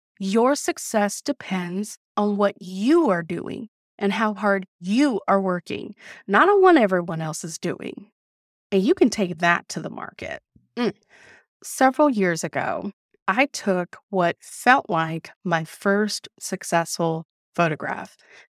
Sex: female